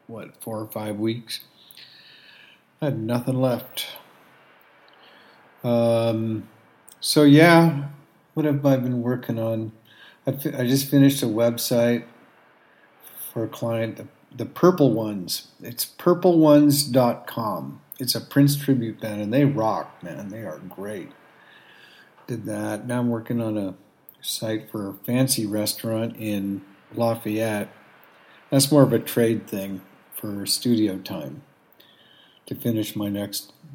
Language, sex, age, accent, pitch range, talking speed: English, male, 50-69, American, 110-135 Hz, 130 wpm